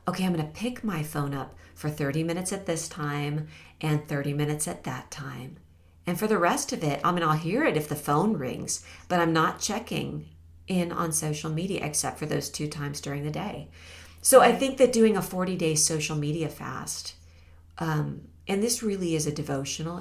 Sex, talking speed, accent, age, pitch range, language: female, 205 wpm, American, 40-59, 140-175 Hz, English